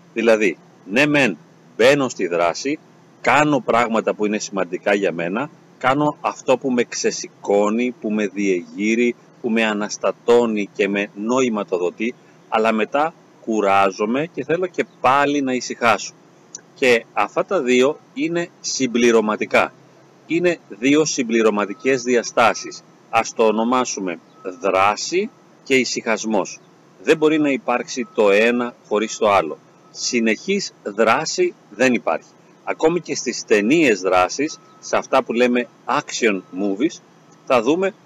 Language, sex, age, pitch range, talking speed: Greek, male, 30-49, 115-160 Hz, 125 wpm